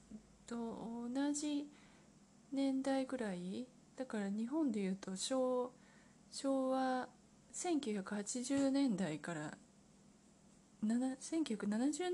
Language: Japanese